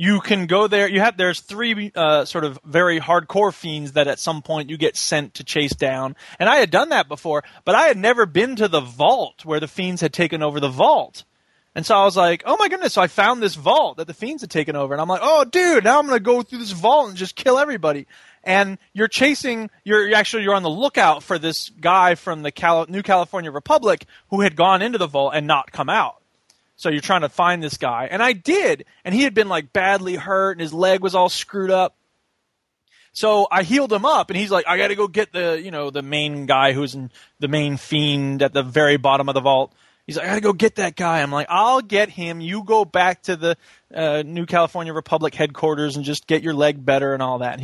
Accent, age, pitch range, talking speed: American, 20-39, 150-210 Hz, 250 wpm